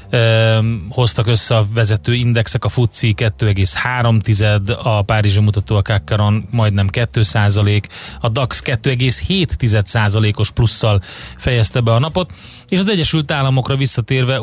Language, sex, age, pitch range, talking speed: Hungarian, male, 30-49, 105-125 Hz, 125 wpm